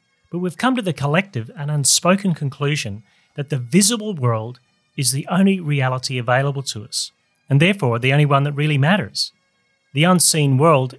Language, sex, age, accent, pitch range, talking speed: English, male, 30-49, Australian, 125-170 Hz, 170 wpm